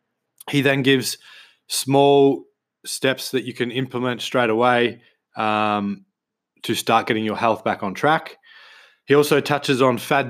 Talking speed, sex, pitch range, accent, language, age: 145 wpm, male, 110-135 Hz, Australian, English, 20-39